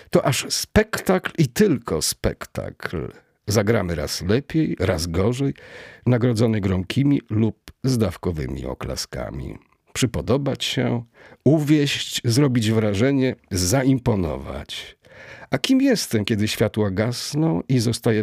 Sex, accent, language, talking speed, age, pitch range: male, native, Polish, 100 wpm, 50-69, 100-140 Hz